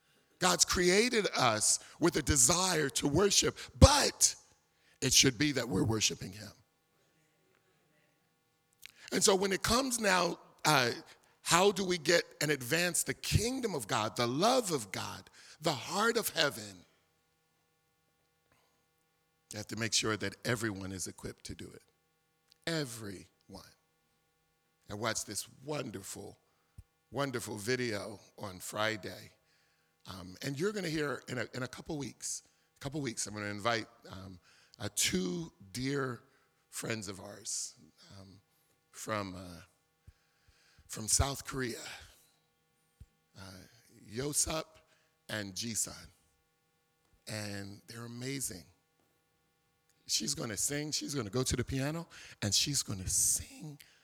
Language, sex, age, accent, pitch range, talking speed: English, male, 50-69, American, 100-145 Hz, 130 wpm